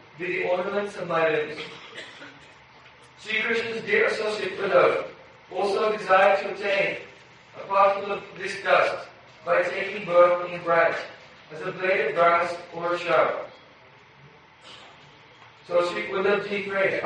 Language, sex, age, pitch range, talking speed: Hindi, male, 40-59, 170-195 Hz, 140 wpm